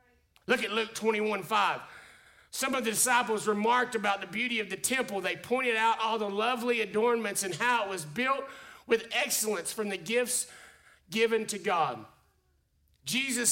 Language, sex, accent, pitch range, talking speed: English, male, American, 185-240 Hz, 165 wpm